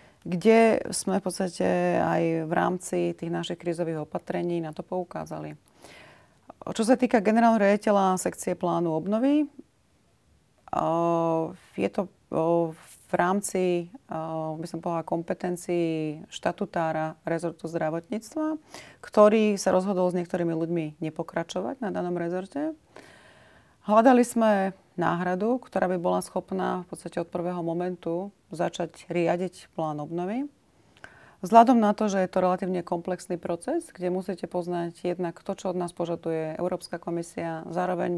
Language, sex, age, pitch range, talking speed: Slovak, female, 30-49, 165-185 Hz, 125 wpm